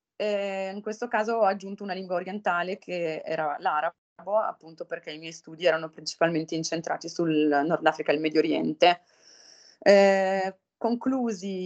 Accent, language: native, Italian